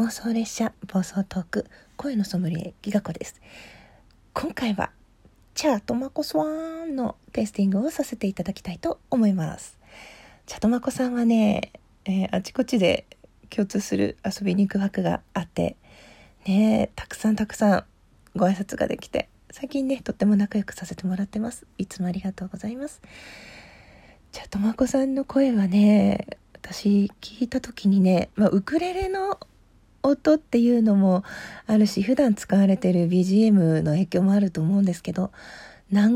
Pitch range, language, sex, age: 195-245 Hz, Japanese, female, 40-59